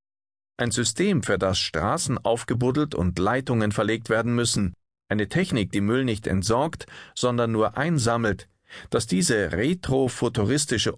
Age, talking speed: 40-59, 125 wpm